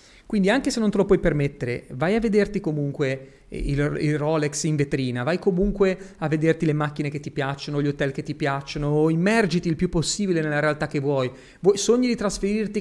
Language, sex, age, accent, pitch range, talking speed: Italian, male, 30-49, native, 135-180 Hz, 200 wpm